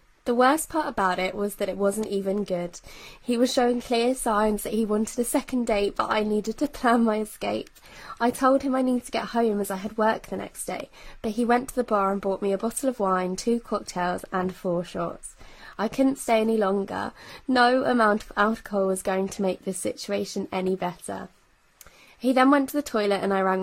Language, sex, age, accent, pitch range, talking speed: English, female, 20-39, British, 195-240 Hz, 225 wpm